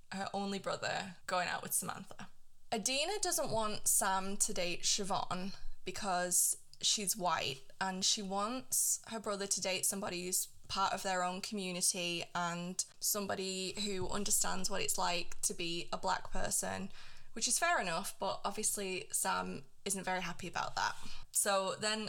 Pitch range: 185-215 Hz